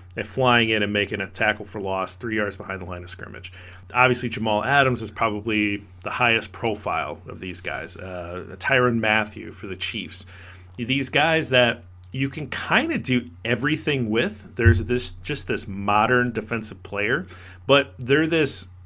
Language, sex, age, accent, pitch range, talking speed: English, male, 40-59, American, 95-135 Hz, 165 wpm